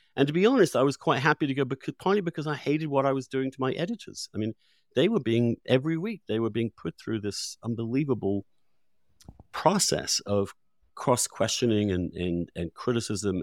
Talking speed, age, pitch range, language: 190 wpm, 50-69, 95-130 Hz, English